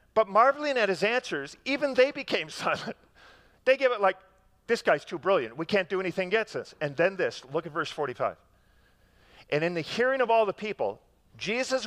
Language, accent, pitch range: English, American, 160-225 Hz